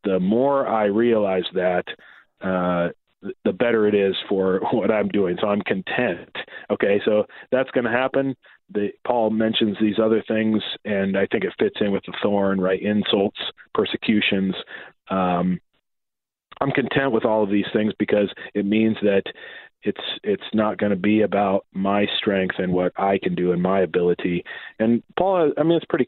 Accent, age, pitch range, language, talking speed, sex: American, 40-59, 95-110 Hz, English, 175 wpm, male